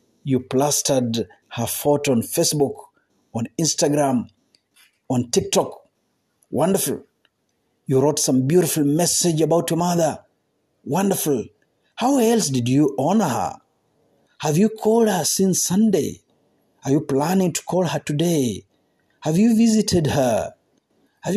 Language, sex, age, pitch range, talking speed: Swahili, male, 50-69, 130-175 Hz, 125 wpm